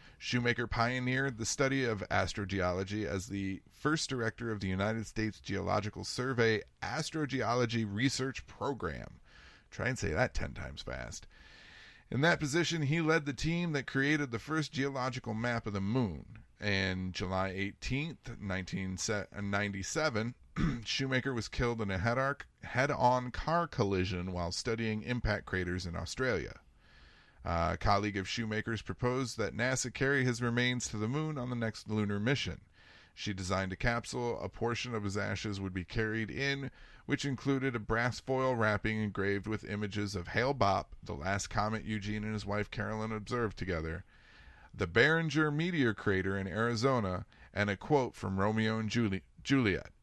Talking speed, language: 150 wpm, English